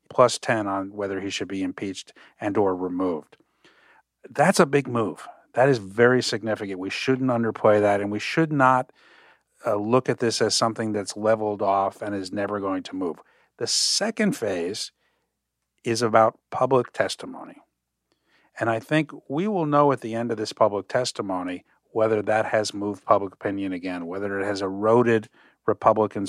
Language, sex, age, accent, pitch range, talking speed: English, male, 50-69, American, 105-130 Hz, 170 wpm